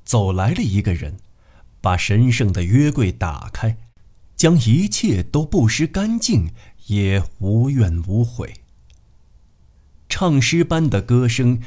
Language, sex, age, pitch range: Chinese, male, 50-69, 95-125 Hz